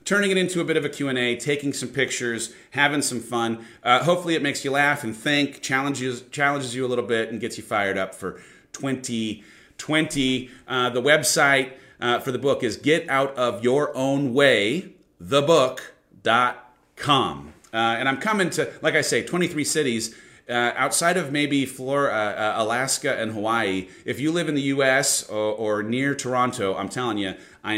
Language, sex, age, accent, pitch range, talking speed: English, male, 30-49, American, 110-145 Hz, 165 wpm